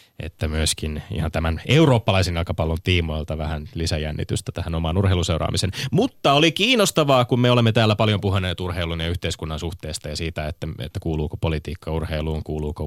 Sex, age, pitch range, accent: male, 20-39, 85-115 Hz, native